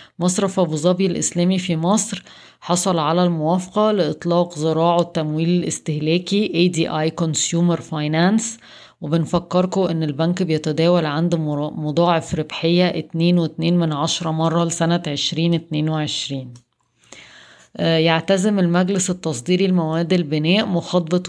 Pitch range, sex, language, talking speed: 160-180 Hz, female, Arabic, 100 wpm